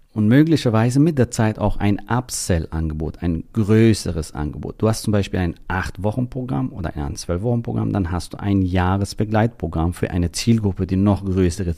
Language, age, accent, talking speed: German, 40-59, German, 160 wpm